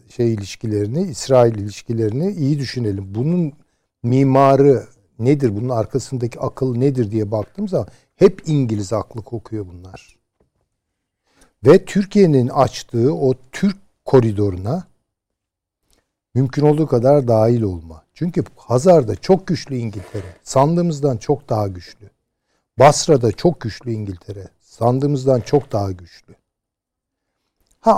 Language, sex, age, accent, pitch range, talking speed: Turkish, male, 60-79, native, 110-165 Hz, 105 wpm